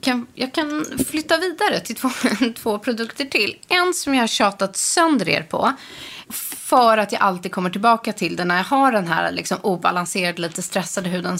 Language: Swedish